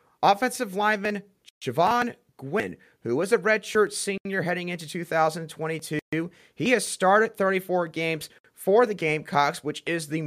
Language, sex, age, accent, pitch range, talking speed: English, male, 30-49, American, 150-200 Hz, 135 wpm